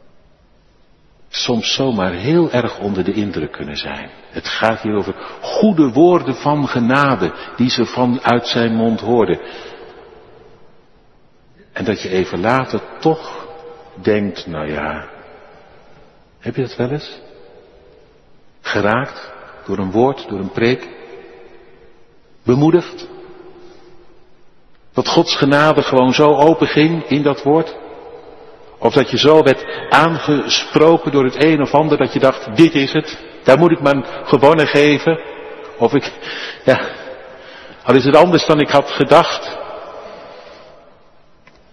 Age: 60-79